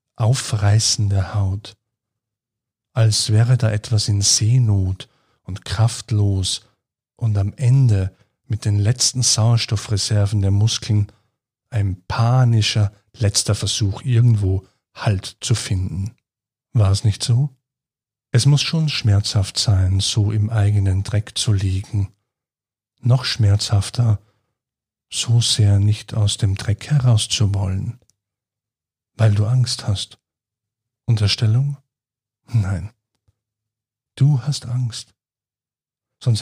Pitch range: 100-120 Hz